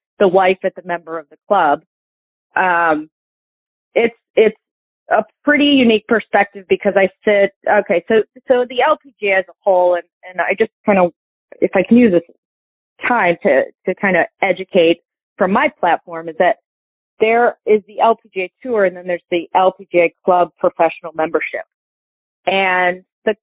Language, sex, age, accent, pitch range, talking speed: English, female, 30-49, American, 170-210 Hz, 160 wpm